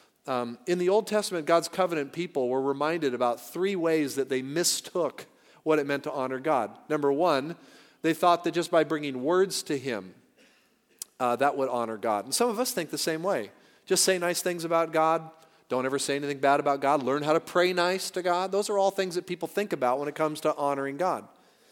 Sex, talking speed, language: male, 220 wpm, English